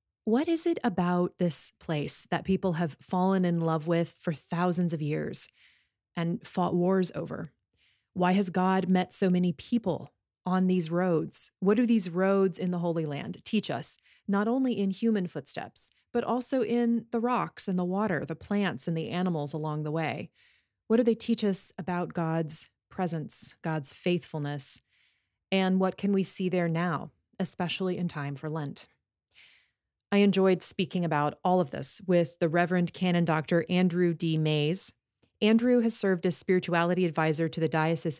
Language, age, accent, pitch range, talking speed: English, 30-49, American, 160-190 Hz, 170 wpm